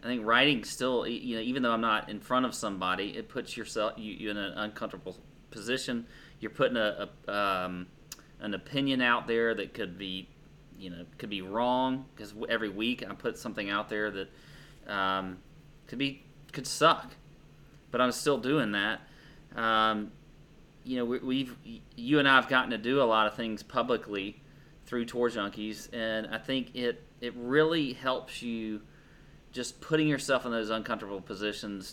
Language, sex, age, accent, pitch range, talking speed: English, male, 30-49, American, 110-145 Hz, 175 wpm